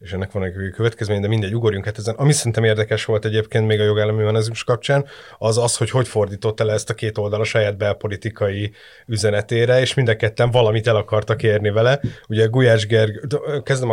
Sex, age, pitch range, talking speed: male, 30-49, 105-125 Hz, 195 wpm